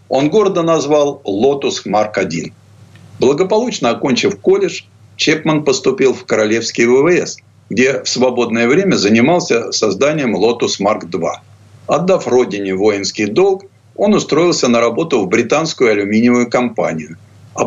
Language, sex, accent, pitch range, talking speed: Russian, male, native, 110-150 Hz, 115 wpm